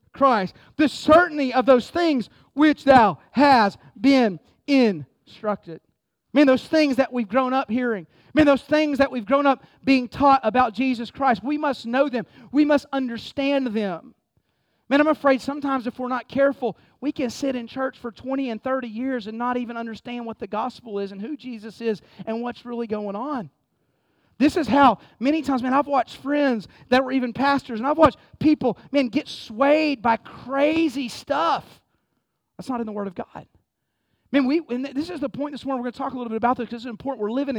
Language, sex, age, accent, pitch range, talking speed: English, male, 40-59, American, 230-275 Hz, 210 wpm